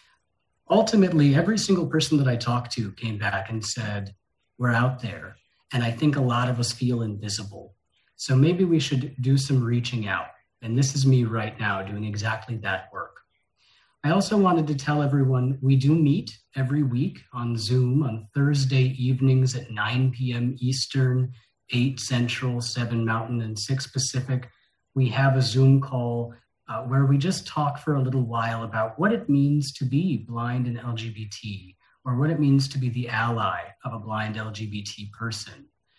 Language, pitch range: English, 115-140 Hz